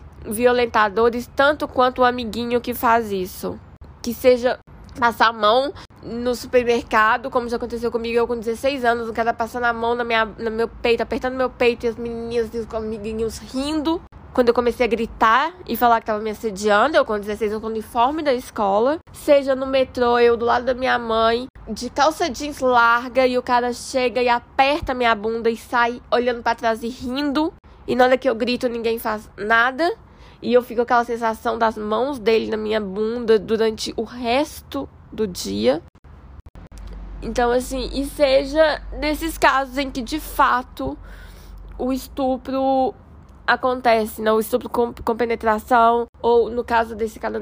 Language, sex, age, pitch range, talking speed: Portuguese, female, 10-29, 220-250 Hz, 175 wpm